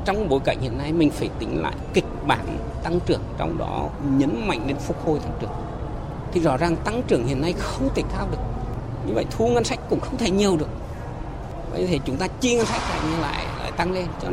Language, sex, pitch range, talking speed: Vietnamese, male, 115-170 Hz, 235 wpm